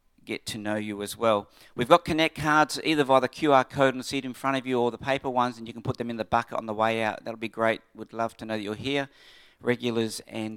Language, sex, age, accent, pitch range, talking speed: English, male, 50-69, Australian, 105-125 Hz, 285 wpm